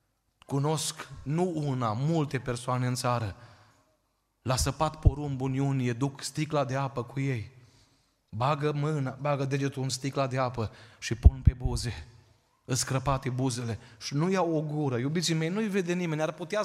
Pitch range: 125-150 Hz